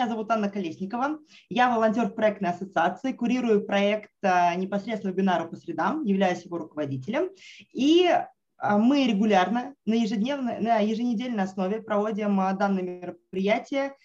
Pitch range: 190-230 Hz